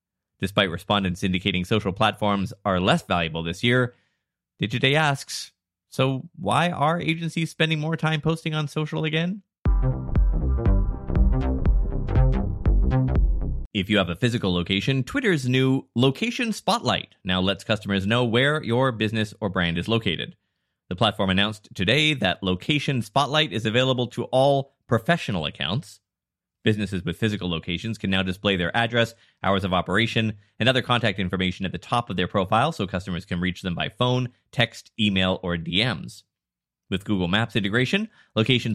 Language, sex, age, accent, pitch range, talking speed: English, male, 20-39, American, 90-125 Hz, 145 wpm